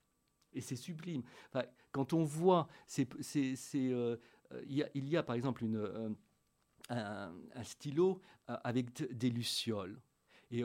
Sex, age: male, 50-69